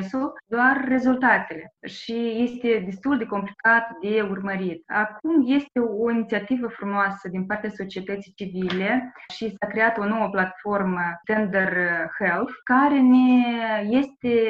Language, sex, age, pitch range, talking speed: Romanian, female, 20-39, 195-255 Hz, 125 wpm